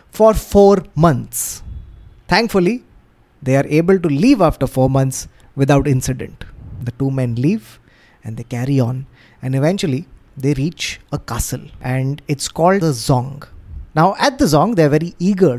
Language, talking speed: English, 160 wpm